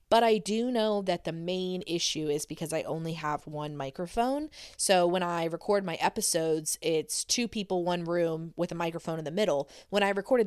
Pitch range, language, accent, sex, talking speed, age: 160-205 Hz, English, American, female, 200 wpm, 20-39